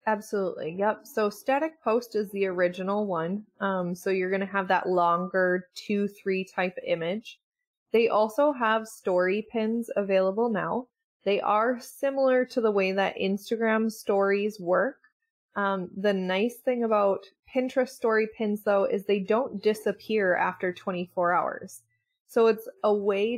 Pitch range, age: 190-230 Hz, 20-39